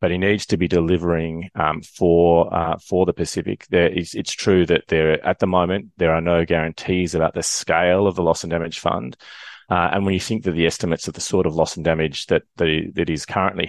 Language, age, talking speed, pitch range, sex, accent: English, 30-49, 235 wpm, 80-90 Hz, male, Australian